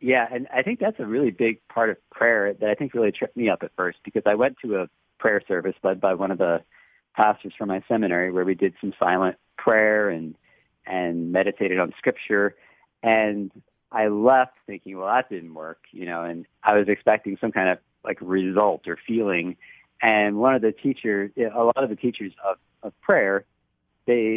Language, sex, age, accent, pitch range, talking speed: English, male, 40-59, American, 95-115 Hz, 200 wpm